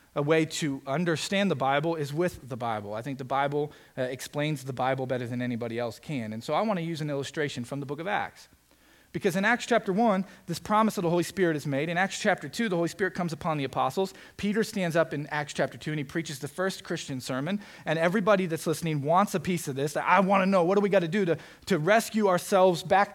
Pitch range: 130-190 Hz